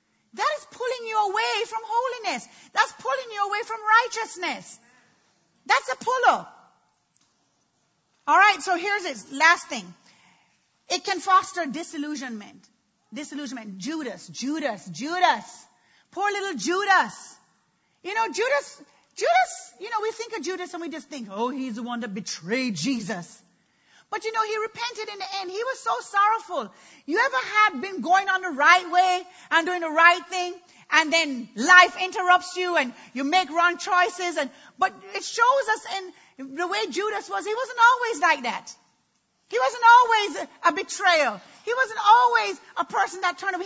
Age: 40-59